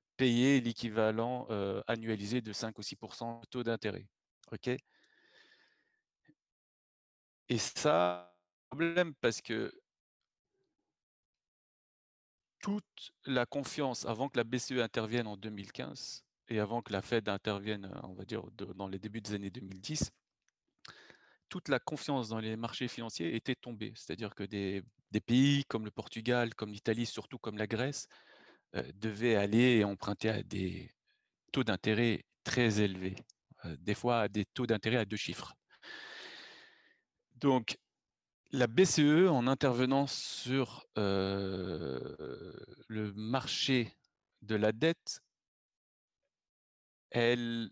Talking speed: 120 wpm